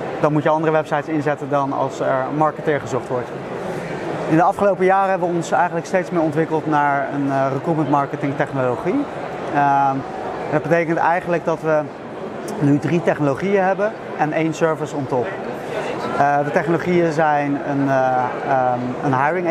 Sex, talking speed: male, 155 wpm